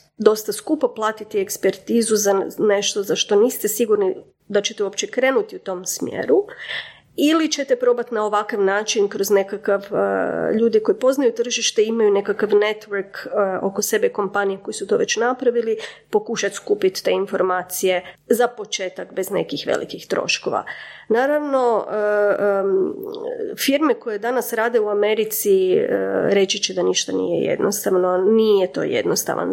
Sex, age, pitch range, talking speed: female, 30-49, 200-255 Hz, 145 wpm